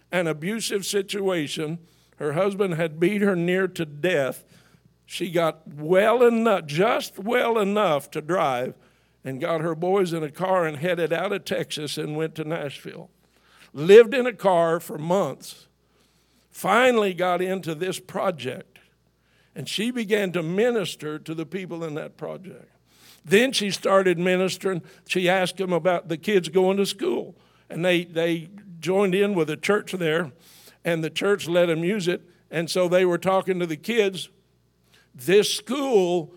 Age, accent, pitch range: 60-79, American, 165-195 Hz